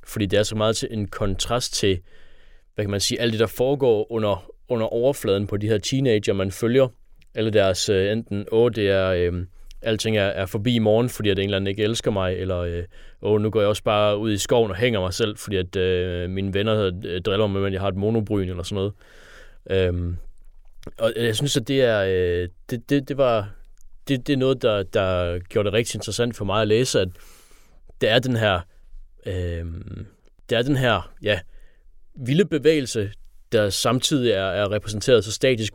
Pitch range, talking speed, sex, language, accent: 95-115 Hz, 205 wpm, male, Danish, native